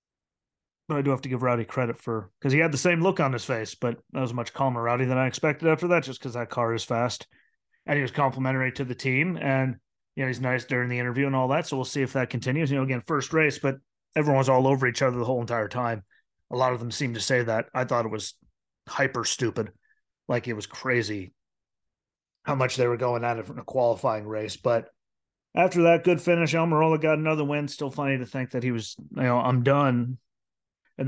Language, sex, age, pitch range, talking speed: English, male, 30-49, 120-145 Hz, 240 wpm